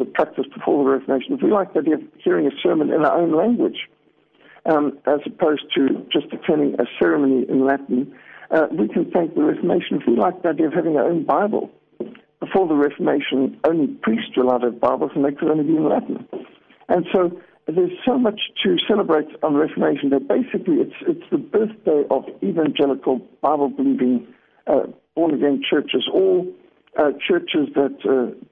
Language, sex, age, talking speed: English, male, 60-79, 180 wpm